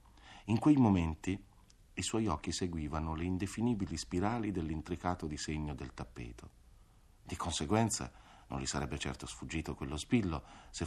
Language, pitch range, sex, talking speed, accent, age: Italian, 75-110 Hz, male, 130 wpm, native, 50-69